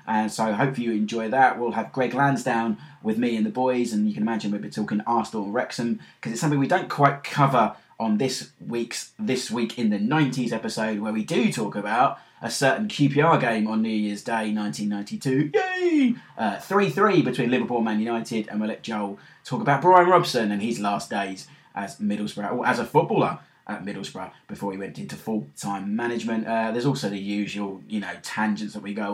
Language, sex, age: English, male, 20-39